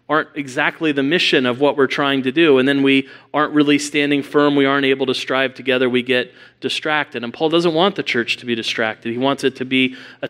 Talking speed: 240 wpm